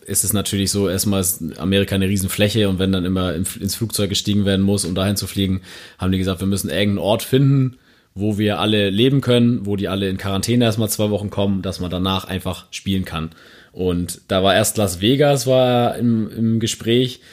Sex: male